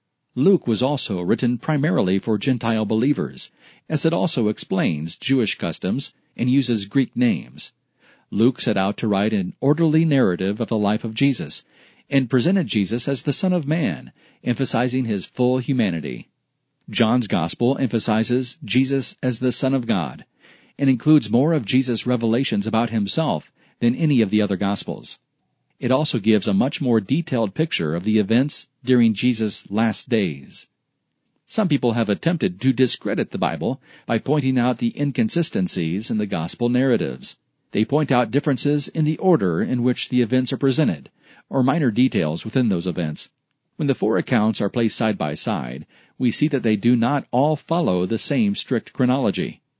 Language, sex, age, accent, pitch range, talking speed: English, male, 40-59, American, 115-145 Hz, 165 wpm